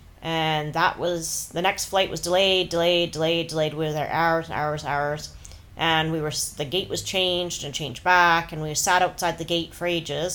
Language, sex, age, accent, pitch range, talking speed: English, female, 30-49, American, 150-180 Hz, 215 wpm